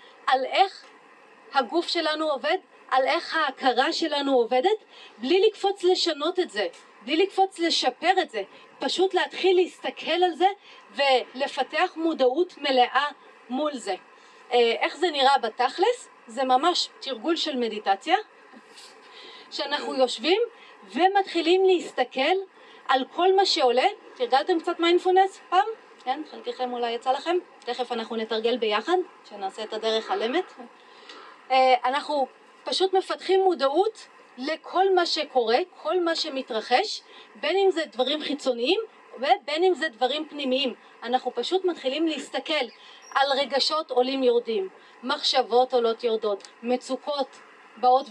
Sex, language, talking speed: female, Hebrew, 120 wpm